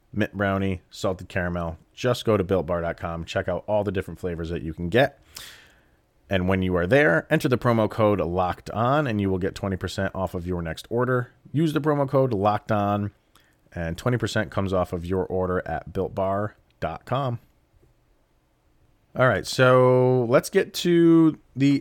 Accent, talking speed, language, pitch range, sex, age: American, 170 wpm, English, 90-125 Hz, male, 30-49